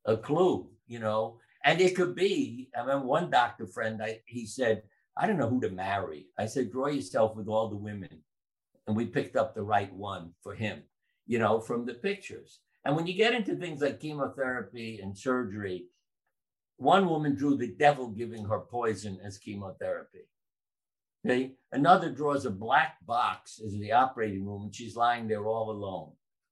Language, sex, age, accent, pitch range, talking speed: English, male, 60-79, American, 110-135 Hz, 180 wpm